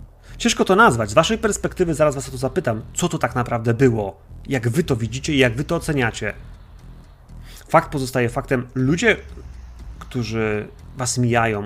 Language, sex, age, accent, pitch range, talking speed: Polish, male, 30-49, native, 95-135 Hz, 165 wpm